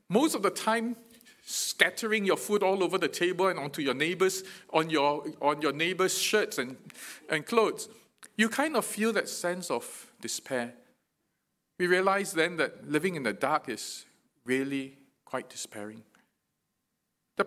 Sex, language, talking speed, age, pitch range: male, English, 155 wpm, 40-59, 140-205 Hz